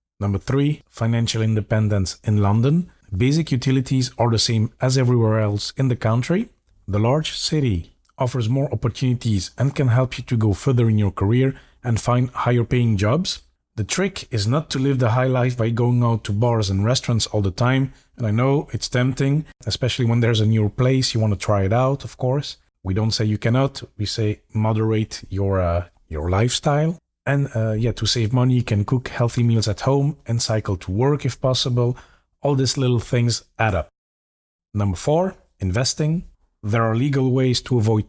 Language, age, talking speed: English, 40-59, 190 wpm